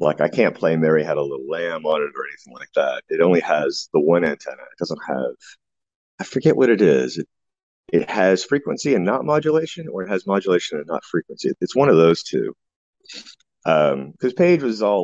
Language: English